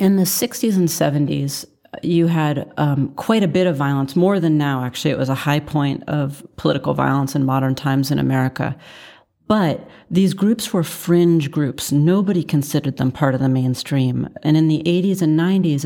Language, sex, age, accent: English, female, 40-59, American